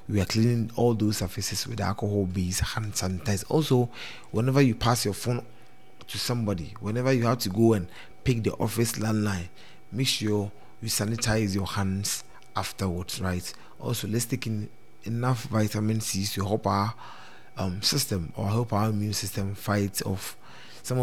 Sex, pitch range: male, 100-120 Hz